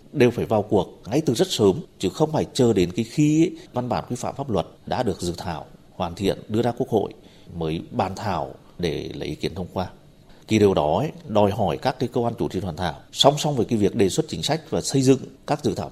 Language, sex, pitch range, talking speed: Vietnamese, male, 90-135 Hz, 255 wpm